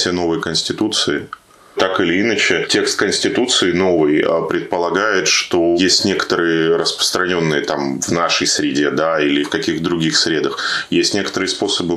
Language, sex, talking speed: Russian, male, 135 wpm